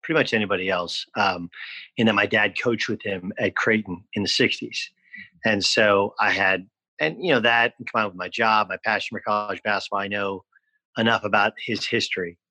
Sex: male